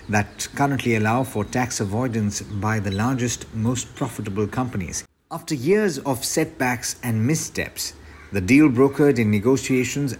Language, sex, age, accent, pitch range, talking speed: English, male, 50-69, Indian, 110-135 Hz, 135 wpm